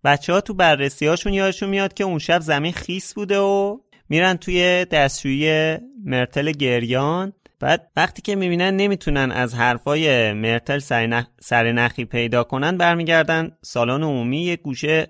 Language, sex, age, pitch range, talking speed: Persian, male, 30-49, 115-155 Hz, 150 wpm